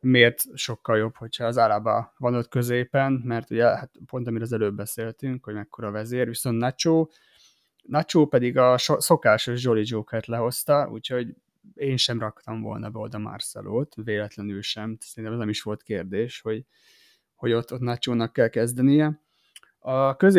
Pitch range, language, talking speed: 115-135 Hz, Hungarian, 160 wpm